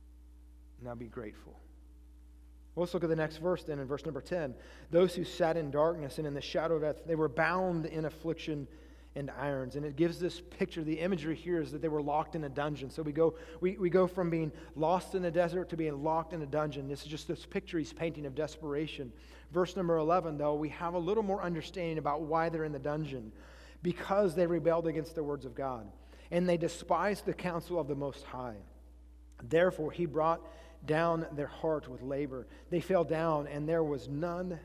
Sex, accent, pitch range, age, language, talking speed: male, American, 130-175 Hz, 30-49, English, 215 wpm